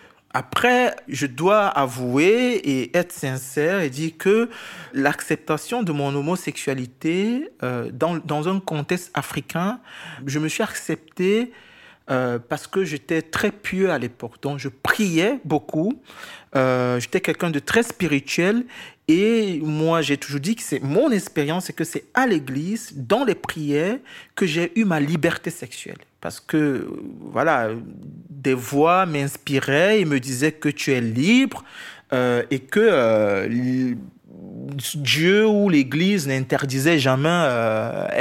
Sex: male